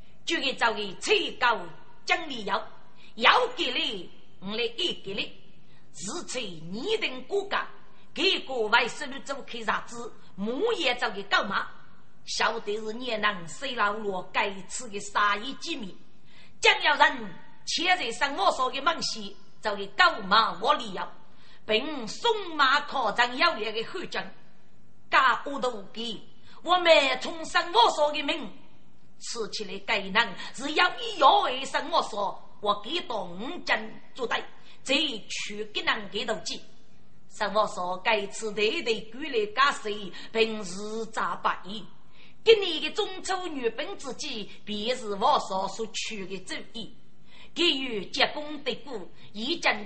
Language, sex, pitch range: Chinese, female, 215-325 Hz